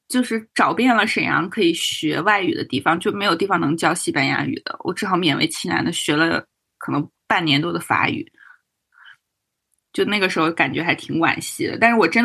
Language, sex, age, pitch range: Chinese, female, 20-39, 170-235 Hz